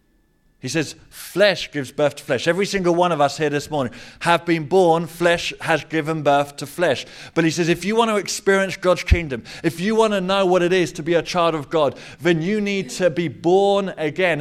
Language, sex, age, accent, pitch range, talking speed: English, male, 30-49, British, 140-175 Hz, 230 wpm